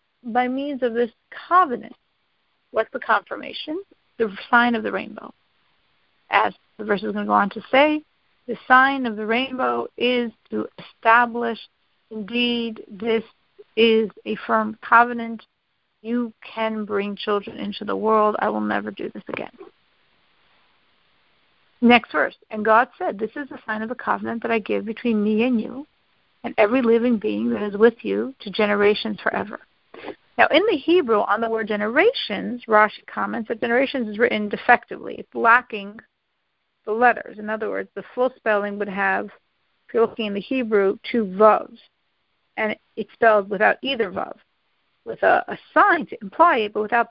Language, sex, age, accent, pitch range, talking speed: English, female, 50-69, American, 215-260 Hz, 165 wpm